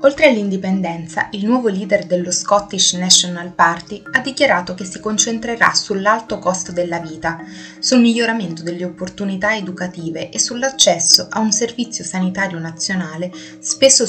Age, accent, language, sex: 20-39, native, Italian, female